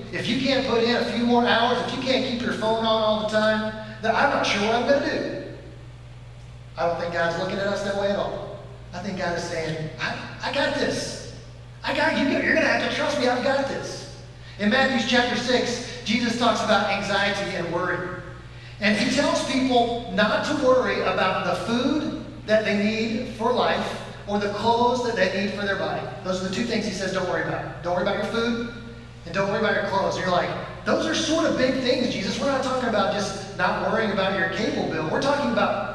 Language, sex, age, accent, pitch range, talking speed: English, male, 40-59, American, 180-240 Hz, 235 wpm